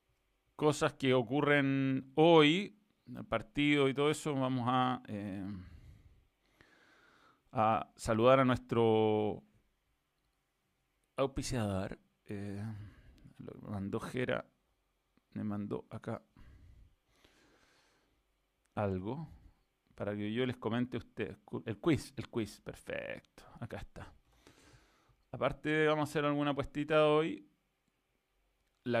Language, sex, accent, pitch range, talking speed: Spanish, male, Argentinian, 115-150 Hz, 95 wpm